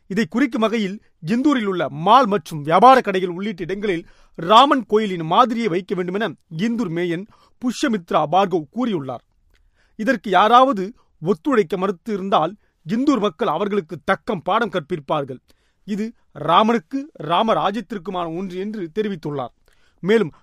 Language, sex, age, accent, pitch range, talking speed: Tamil, male, 30-49, native, 180-230 Hz, 115 wpm